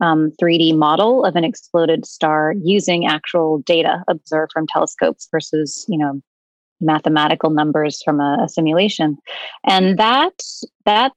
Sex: female